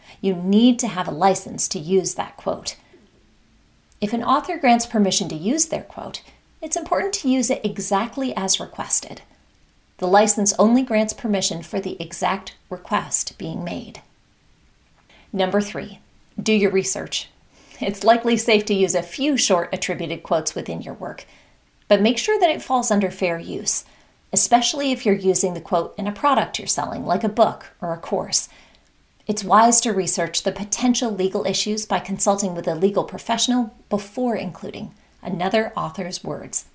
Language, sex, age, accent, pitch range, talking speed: English, female, 30-49, American, 185-225 Hz, 165 wpm